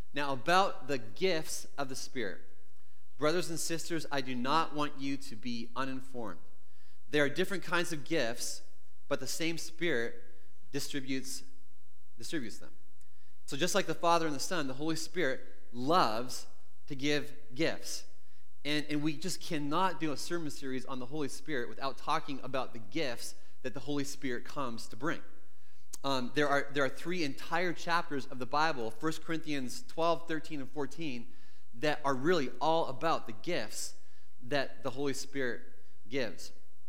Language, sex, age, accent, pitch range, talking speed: English, male, 30-49, American, 125-160 Hz, 160 wpm